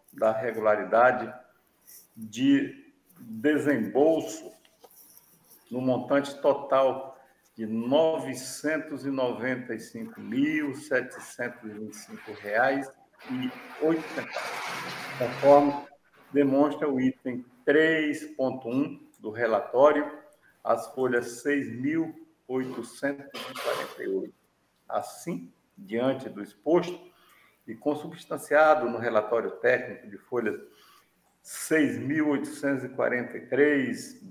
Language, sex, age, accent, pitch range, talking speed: Portuguese, male, 50-69, Brazilian, 125-160 Hz, 55 wpm